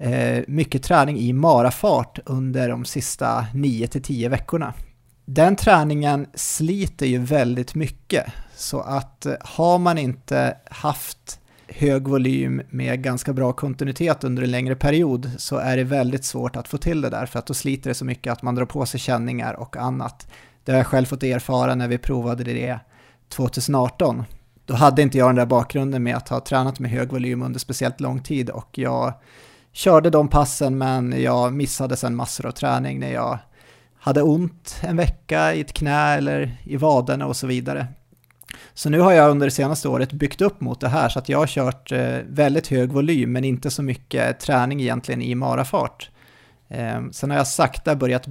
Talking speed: 185 wpm